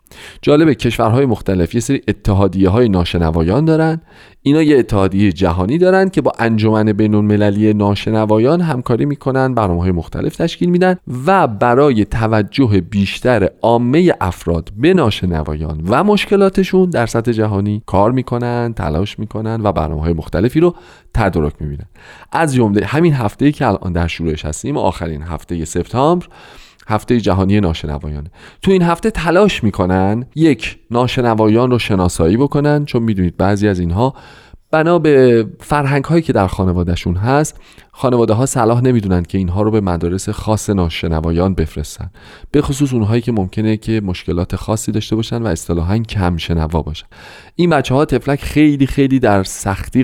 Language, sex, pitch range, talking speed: Persian, male, 90-130 Hz, 145 wpm